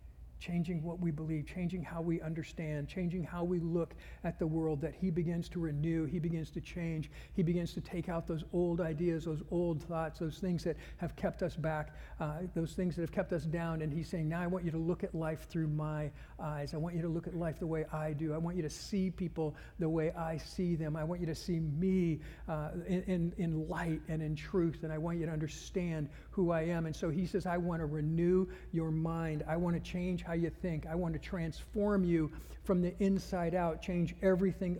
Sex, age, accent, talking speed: male, 60-79, American, 230 wpm